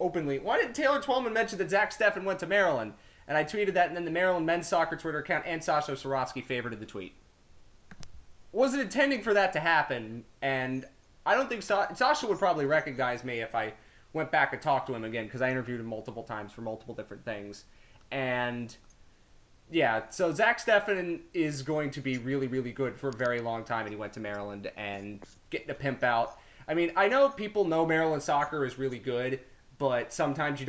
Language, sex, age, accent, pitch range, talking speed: English, male, 20-39, American, 120-170 Hz, 205 wpm